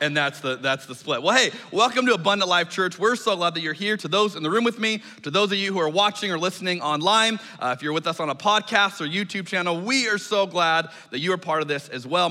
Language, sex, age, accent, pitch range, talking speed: English, male, 30-49, American, 150-210 Hz, 290 wpm